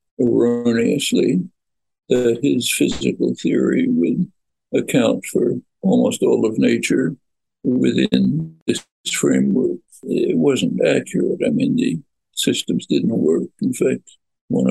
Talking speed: 110 wpm